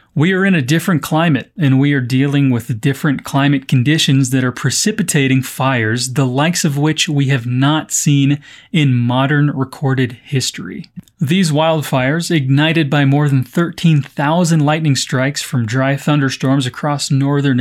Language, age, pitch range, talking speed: Portuguese, 30-49, 135-165 Hz, 150 wpm